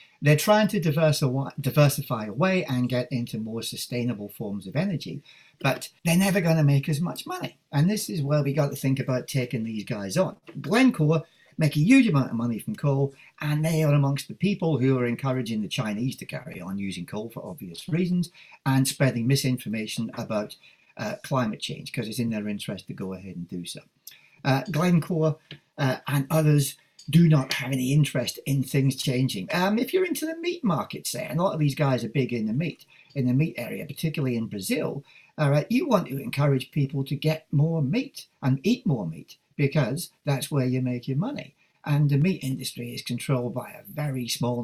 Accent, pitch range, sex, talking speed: British, 130-160 Hz, male, 200 wpm